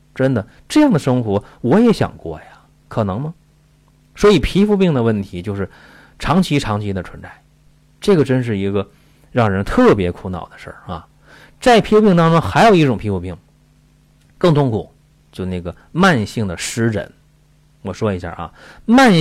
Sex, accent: male, native